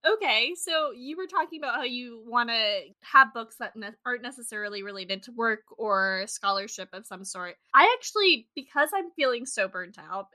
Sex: female